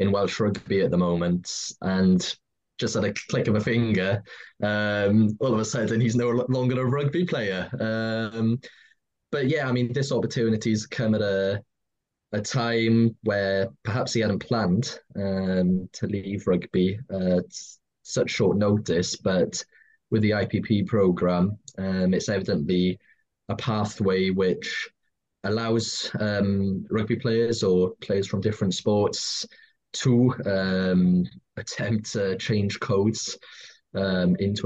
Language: English